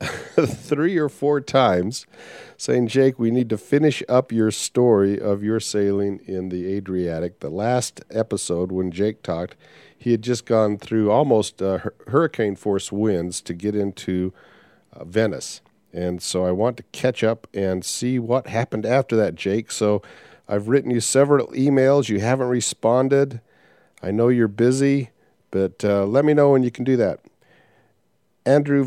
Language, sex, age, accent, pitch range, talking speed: English, male, 50-69, American, 100-130 Hz, 160 wpm